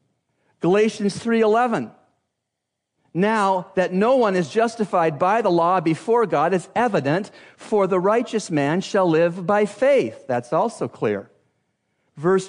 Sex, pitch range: male, 155-220 Hz